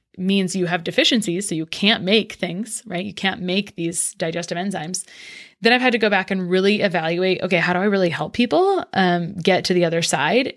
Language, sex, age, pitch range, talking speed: English, female, 20-39, 175-210 Hz, 215 wpm